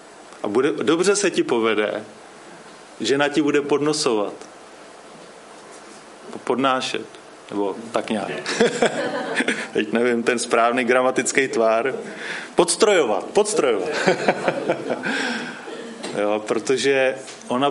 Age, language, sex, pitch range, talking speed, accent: 30-49, Czech, male, 125-185 Hz, 80 wpm, native